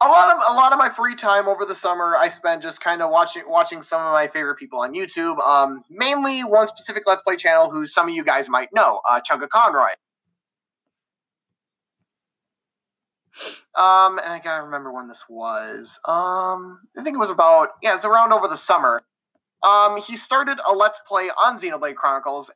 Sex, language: male, English